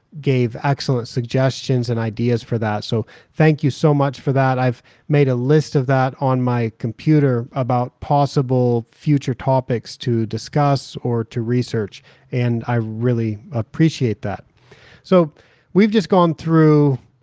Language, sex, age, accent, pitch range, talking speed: English, male, 30-49, American, 120-145 Hz, 145 wpm